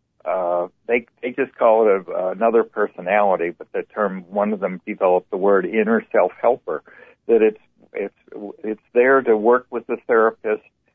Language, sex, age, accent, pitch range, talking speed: English, male, 60-79, American, 95-120 Hz, 175 wpm